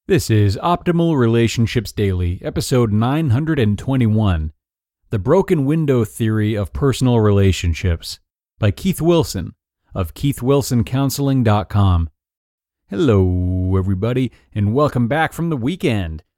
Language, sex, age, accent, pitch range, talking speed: English, male, 30-49, American, 100-135 Hz, 100 wpm